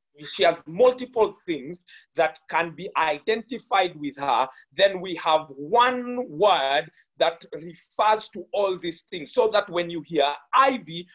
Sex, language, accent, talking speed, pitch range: male, English, South African, 145 wpm, 155-220 Hz